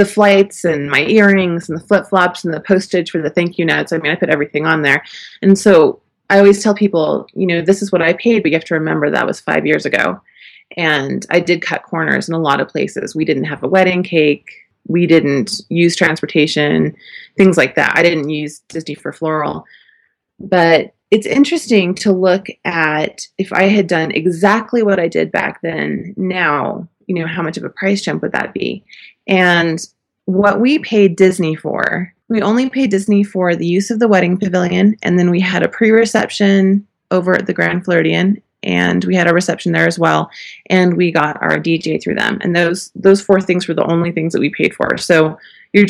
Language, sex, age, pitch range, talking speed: English, female, 30-49, 160-200 Hz, 210 wpm